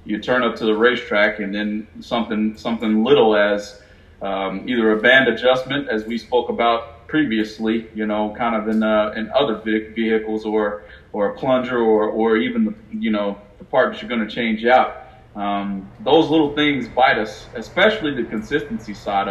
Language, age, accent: English, 40-59, American